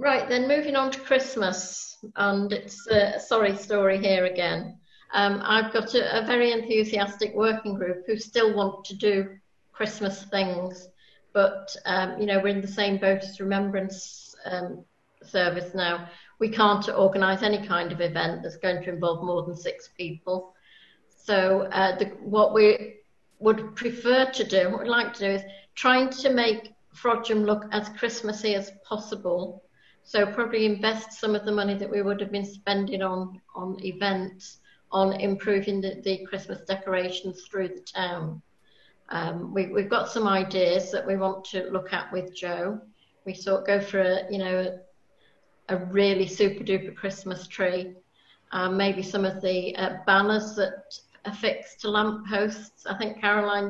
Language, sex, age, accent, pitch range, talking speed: English, female, 60-79, British, 185-210 Hz, 170 wpm